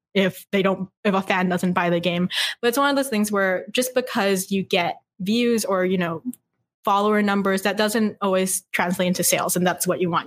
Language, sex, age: English, female, 10-29